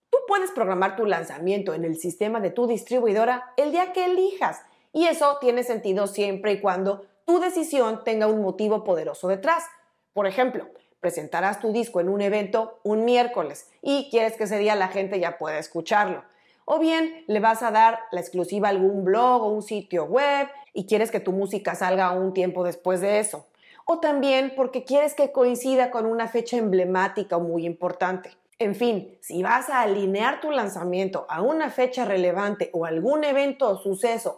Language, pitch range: Spanish, 195-255 Hz